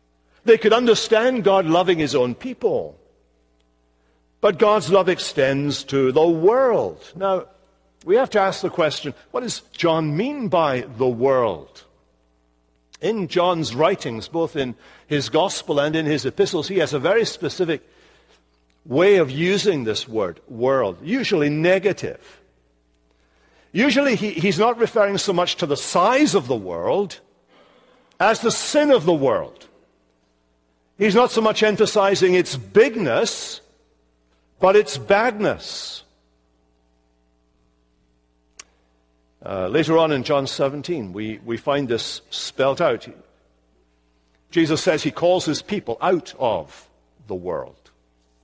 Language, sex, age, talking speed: English, male, 60-79, 130 wpm